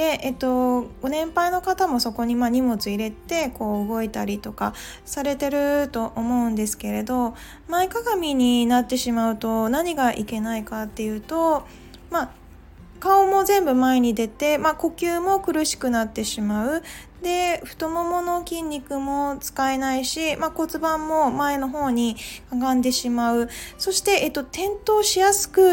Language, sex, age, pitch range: Japanese, female, 20-39, 235-320 Hz